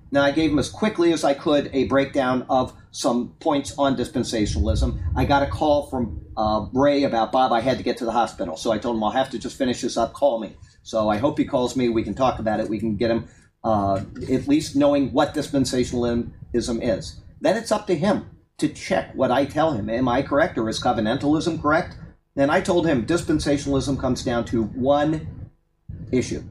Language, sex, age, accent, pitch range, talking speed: English, male, 40-59, American, 115-150 Hz, 215 wpm